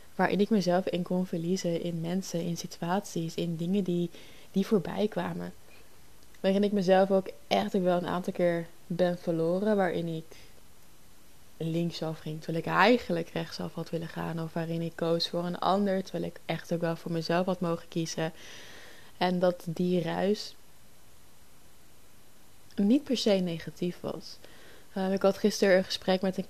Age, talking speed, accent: 20-39, 165 wpm, Dutch